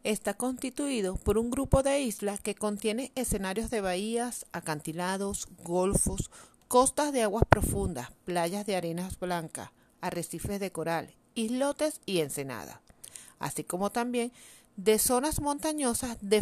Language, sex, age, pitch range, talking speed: Spanish, female, 40-59, 170-255 Hz, 130 wpm